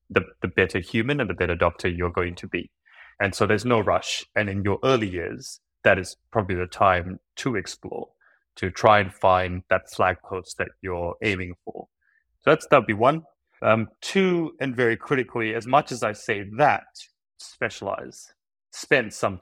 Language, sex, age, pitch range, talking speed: English, male, 20-39, 95-110 Hz, 180 wpm